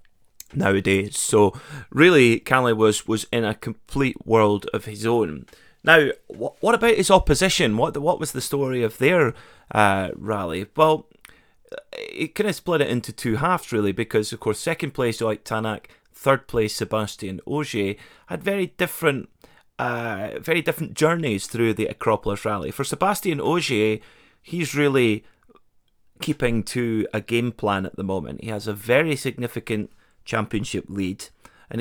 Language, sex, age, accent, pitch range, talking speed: English, male, 30-49, British, 105-135 Hz, 155 wpm